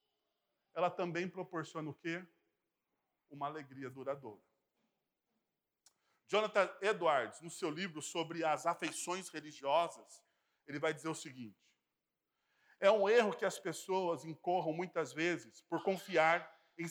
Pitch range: 170-230 Hz